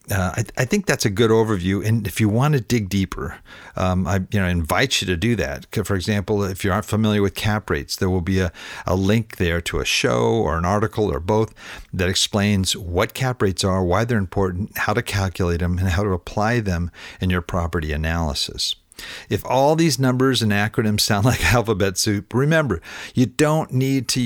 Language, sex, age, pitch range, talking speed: English, male, 50-69, 95-115 Hz, 205 wpm